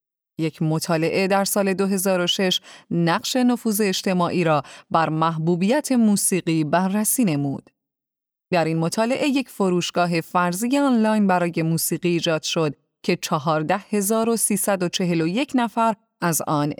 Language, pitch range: Persian, 165-230 Hz